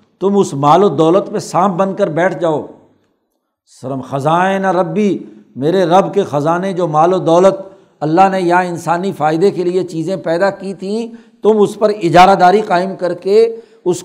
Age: 60-79